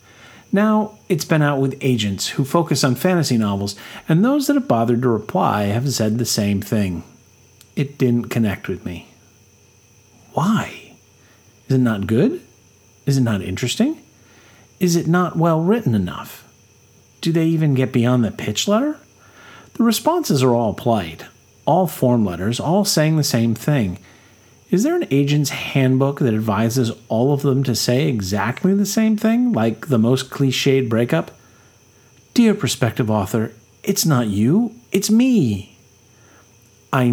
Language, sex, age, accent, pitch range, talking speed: English, male, 40-59, American, 105-150 Hz, 150 wpm